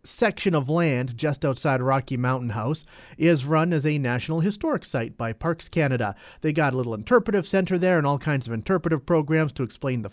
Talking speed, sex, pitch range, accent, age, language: 200 wpm, male, 125-170 Hz, American, 40-59, English